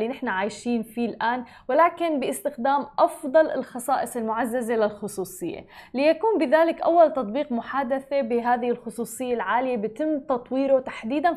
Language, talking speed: Arabic, 115 wpm